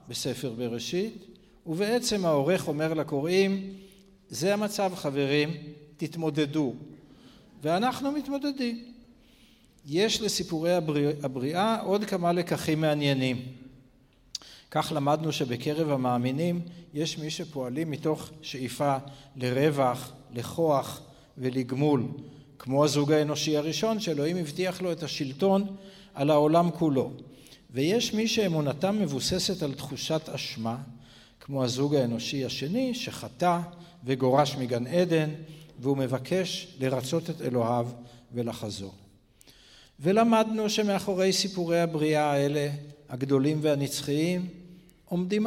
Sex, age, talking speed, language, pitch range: male, 60-79, 95 wpm, Hebrew, 140-185 Hz